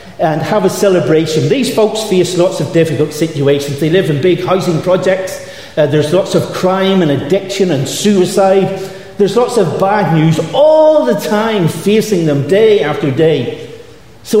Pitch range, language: 155-195 Hz, English